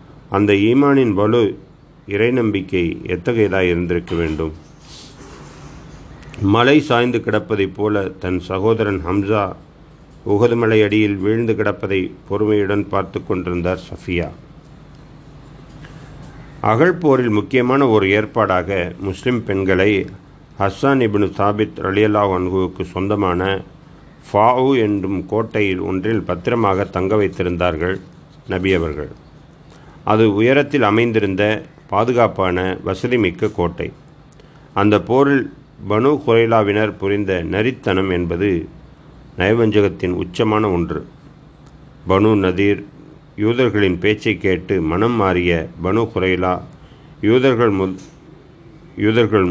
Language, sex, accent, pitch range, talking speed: Tamil, male, native, 95-120 Hz, 90 wpm